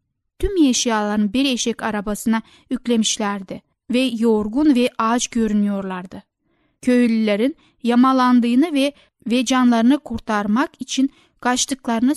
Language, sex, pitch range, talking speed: Turkish, female, 215-275 Hz, 95 wpm